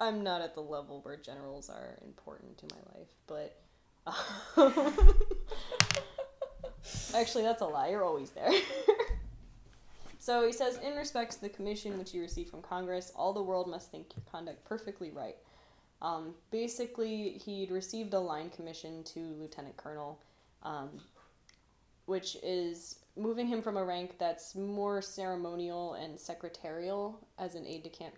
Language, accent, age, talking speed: English, American, 10-29, 145 wpm